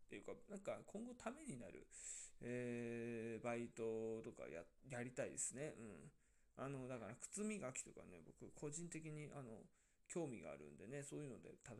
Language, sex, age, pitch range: Japanese, male, 20-39, 115-155 Hz